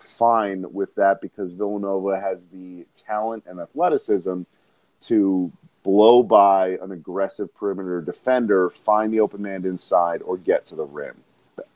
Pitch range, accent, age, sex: 90-110 Hz, American, 30-49, male